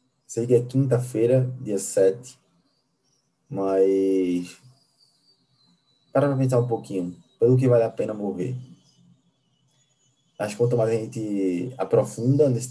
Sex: male